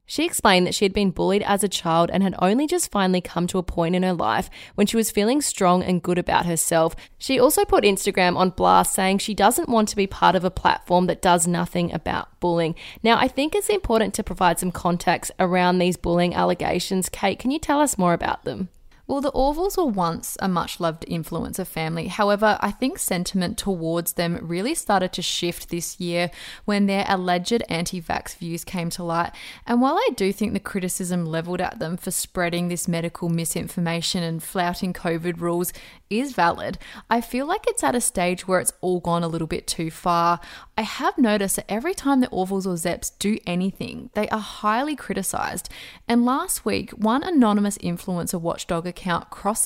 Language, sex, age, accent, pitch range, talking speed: English, female, 10-29, Australian, 175-220 Hz, 200 wpm